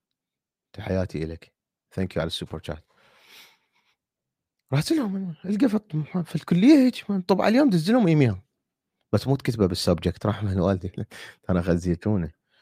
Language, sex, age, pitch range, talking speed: Arabic, male, 30-49, 90-110 Hz, 115 wpm